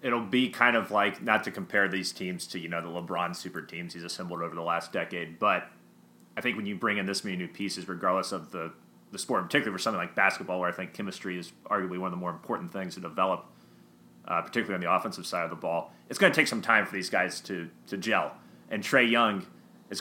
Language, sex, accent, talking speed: English, male, American, 250 wpm